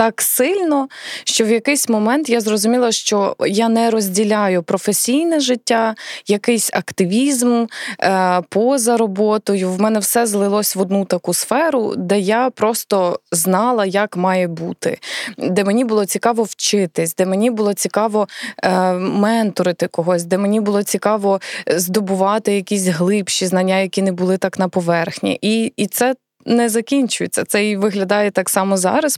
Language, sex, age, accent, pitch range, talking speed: Ukrainian, female, 20-39, native, 190-230 Hz, 140 wpm